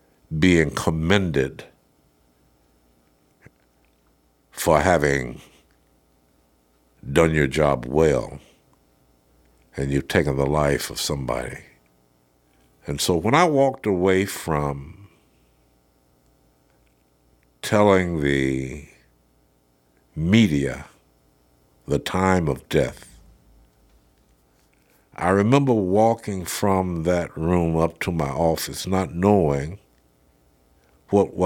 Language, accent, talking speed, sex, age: English, American, 80 wpm, male, 60-79